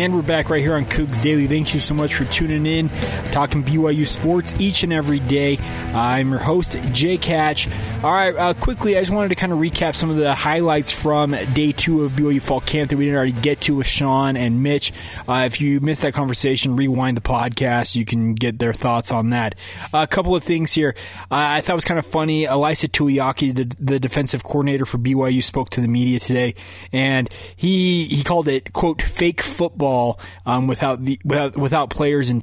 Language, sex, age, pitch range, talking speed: English, male, 20-39, 125-150 Hz, 215 wpm